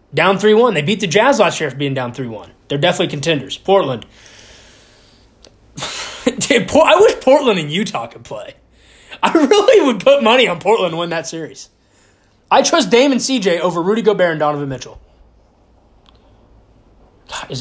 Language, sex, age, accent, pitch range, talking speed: English, male, 20-39, American, 120-180 Hz, 155 wpm